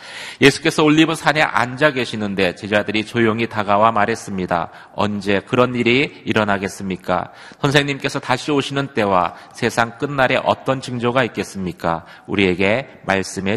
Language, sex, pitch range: Korean, male, 95-125 Hz